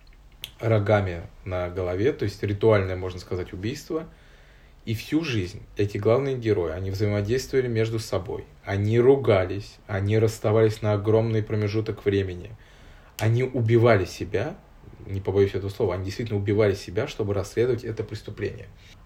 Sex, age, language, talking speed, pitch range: male, 20-39, Russian, 130 wpm, 95-115 Hz